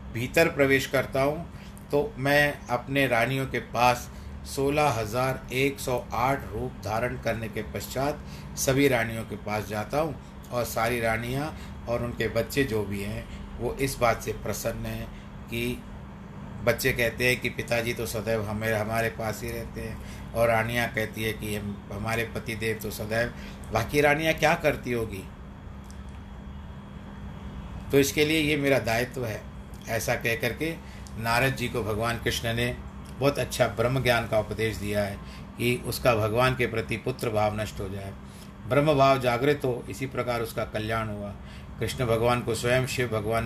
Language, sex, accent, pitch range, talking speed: Hindi, male, native, 110-125 Hz, 160 wpm